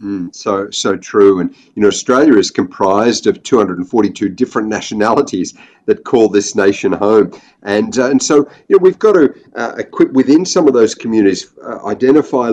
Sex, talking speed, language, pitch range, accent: male, 175 wpm, English, 105-135 Hz, Australian